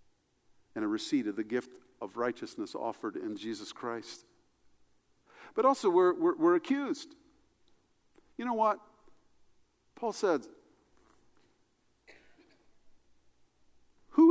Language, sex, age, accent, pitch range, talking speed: English, male, 50-69, American, 210-345 Hz, 100 wpm